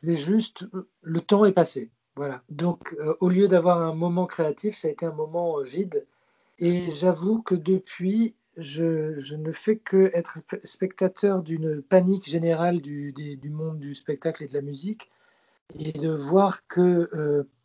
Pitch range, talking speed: 160-195 Hz, 170 wpm